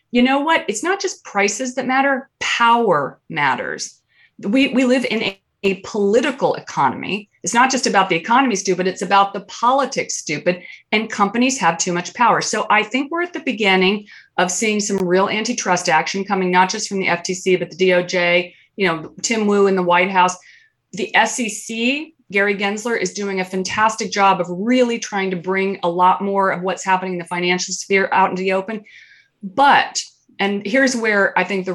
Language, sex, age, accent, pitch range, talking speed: English, female, 30-49, American, 180-225 Hz, 195 wpm